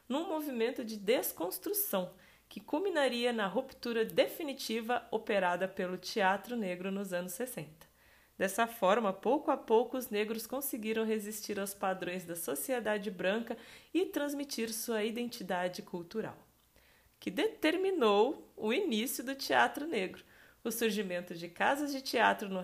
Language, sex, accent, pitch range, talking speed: Portuguese, female, Brazilian, 190-265 Hz, 130 wpm